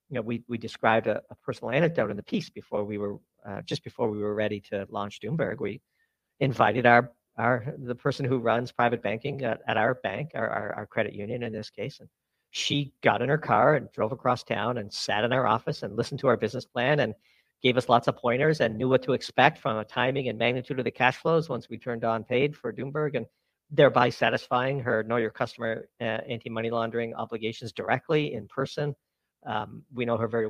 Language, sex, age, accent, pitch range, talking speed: English, male, 50-69, American, 110-130 Hz, 220 wpm